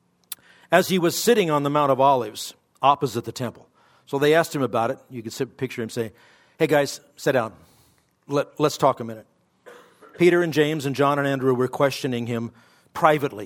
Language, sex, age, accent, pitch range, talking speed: English, male, 50-69, American, 125-165 Hz, 190 wpm